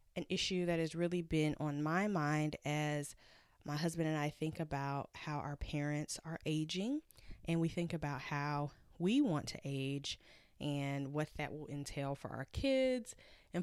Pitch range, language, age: 150-185 Hz, English, 10-29